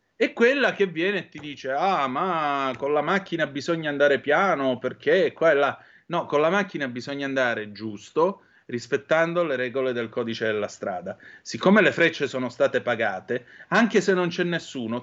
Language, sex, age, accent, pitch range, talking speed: Italian, male, 30-49, native, 125-165 Hz, 175 wpm